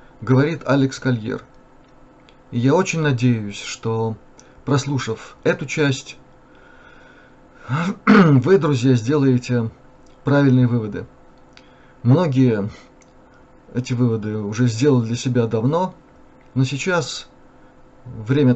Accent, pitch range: native, 115-140 Hz